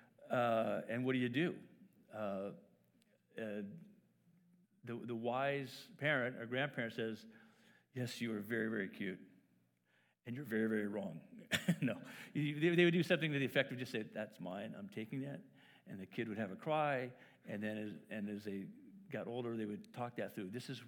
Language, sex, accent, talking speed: English, male, American, 185 wpm